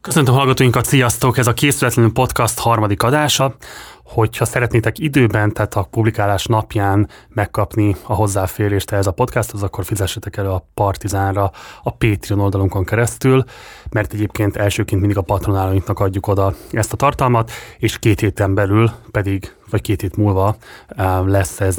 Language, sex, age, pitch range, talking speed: Hungarian, male, 30-49, 100-120 Hz, 145 wpm